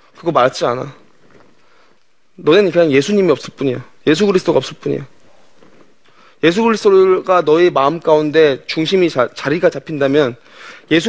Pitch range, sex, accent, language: 155-210 Hz, male, native, Korean